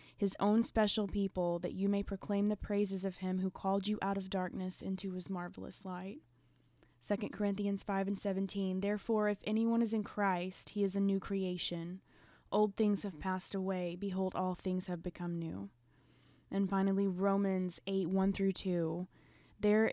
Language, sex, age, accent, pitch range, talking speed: English, female, 20-39, American, 180-200 Hz, 170 wpm